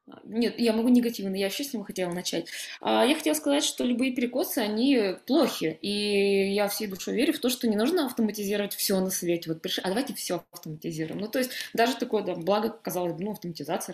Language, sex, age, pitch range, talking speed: Russian, female, 20-39, 185-235 Hz, 210 wpm